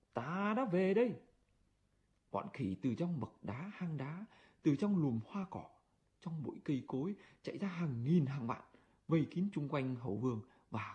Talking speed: 185 wpm